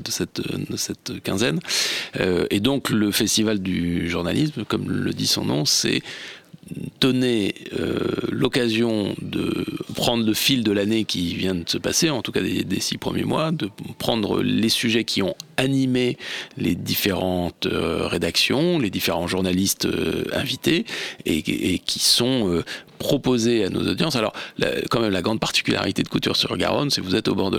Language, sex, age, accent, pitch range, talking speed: French, male, 40-59, French, 95-120 Hz, 175 wpm